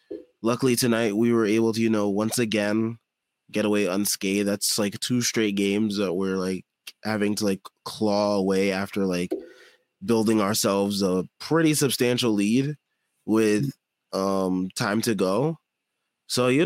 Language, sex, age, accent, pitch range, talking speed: English, male, 20-39, American, 100-130 Hz, 150 wpm